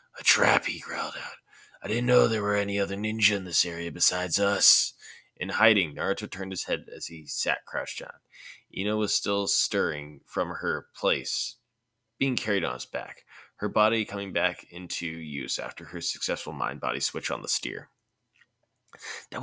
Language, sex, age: English, male, 20-39